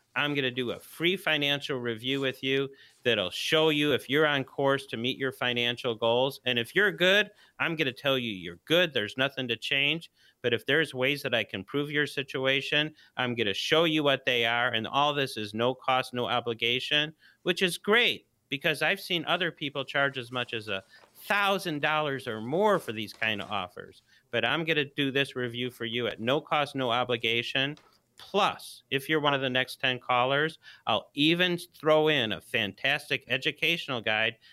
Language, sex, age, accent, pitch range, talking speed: English, male, 40-59, American, 120-155 Hz, 195 wpm